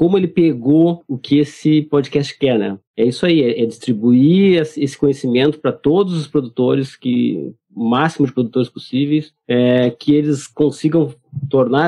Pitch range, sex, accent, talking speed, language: 120-150 Hz, male, Brazilian, 145 wpm, Portuguese